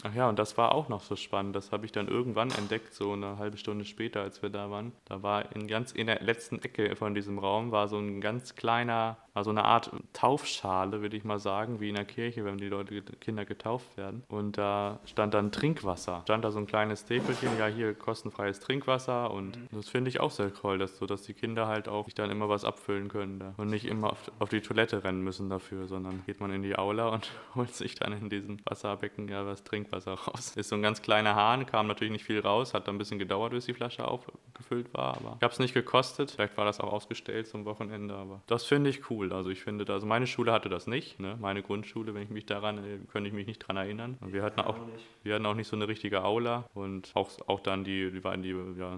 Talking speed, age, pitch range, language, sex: 245 wpm, 20-39, 100-115 Hz, German, male